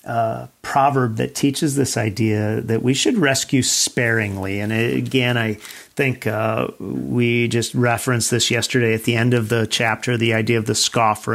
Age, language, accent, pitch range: 40-59, English, American, 115-145 Hz